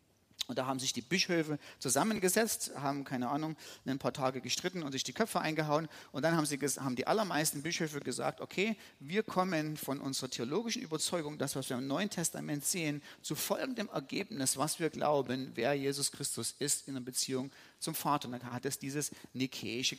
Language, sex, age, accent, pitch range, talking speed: German, male, 40-59, German, 130-180 Hz, 185 wpm